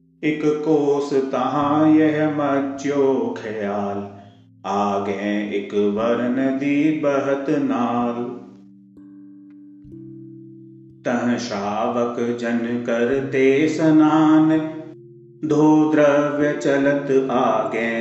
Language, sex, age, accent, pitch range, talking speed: Hindi, male, 40-59, native, 115-150 Hz, 70 wpm